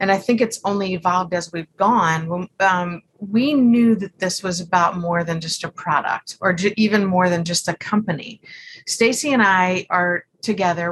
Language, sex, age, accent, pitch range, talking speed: English, female, 30-49, American, 180-225 Hz, 180 wpm